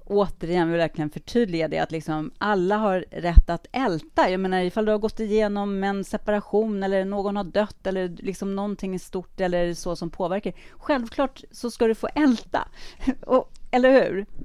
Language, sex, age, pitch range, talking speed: Swedish, female, 30-49, 170-225 Hz, 185 wpm